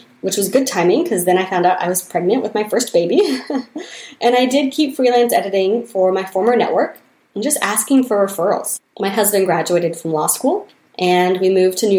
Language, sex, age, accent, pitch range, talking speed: English, female, 20-39, American, 180-245 Hz, 210 wpm